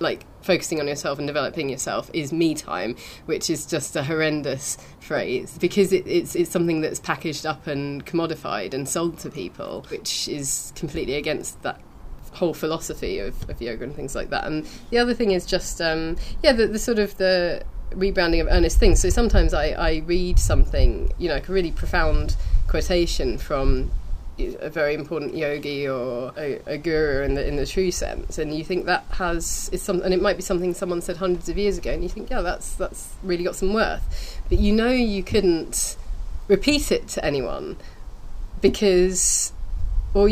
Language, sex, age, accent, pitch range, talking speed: English, female, 30-49, British, 130-185 Hz, 190 wpm